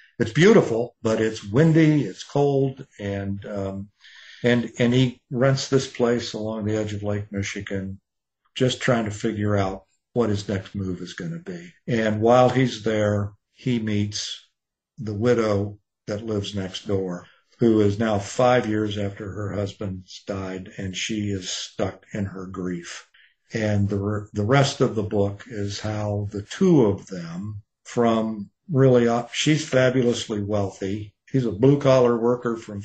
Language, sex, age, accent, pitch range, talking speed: English, male, 50-69, American, 100-125 Hz, 155 wpm